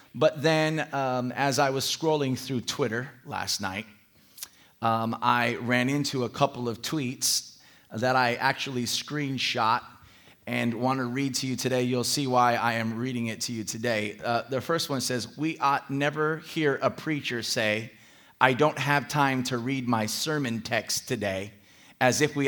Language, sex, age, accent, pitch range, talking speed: English, male, 30-49, American, 120-155 Hz, 175 wpm